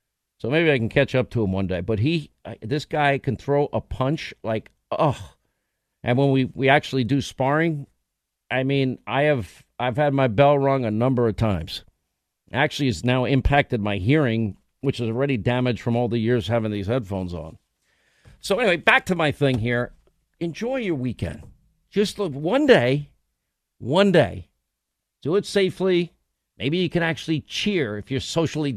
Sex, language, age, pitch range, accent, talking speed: male, English, 50-69, 115-160 Hz, American, 175 wpm